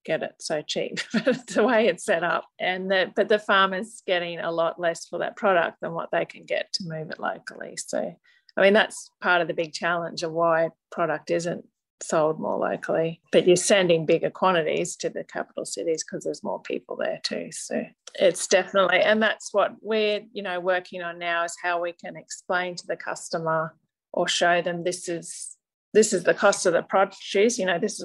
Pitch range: 170-200 Hz